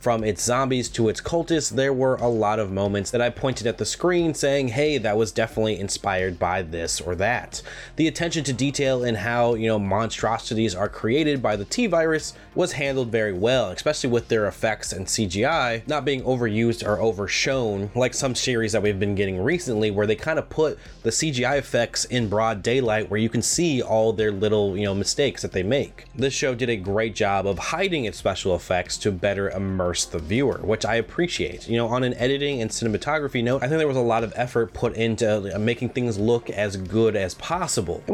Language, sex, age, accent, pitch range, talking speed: English, male, 20-39, American, 100-130 Hz, 210 wpm